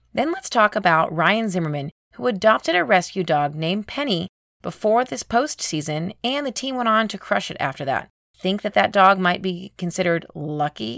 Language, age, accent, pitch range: English, 30-49, American, 165-220 Hz